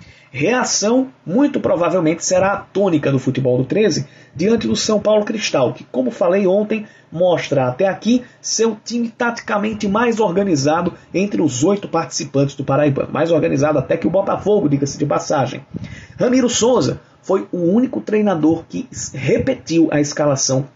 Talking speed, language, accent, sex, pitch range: 150 wpm, Portuguese, Brazilian, male, 145-210 Hz